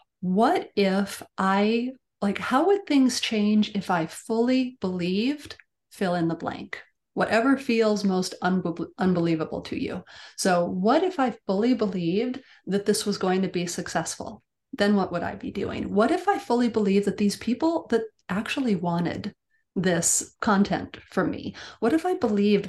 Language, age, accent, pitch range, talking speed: English, 30-49, American, 185-240 Hz, 160 wpm